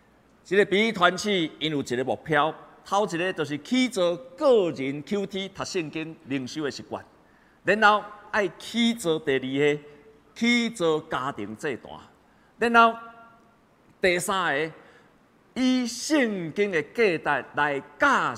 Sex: male